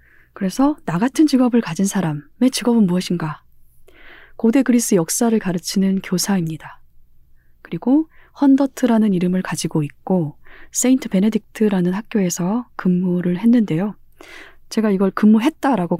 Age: 20-39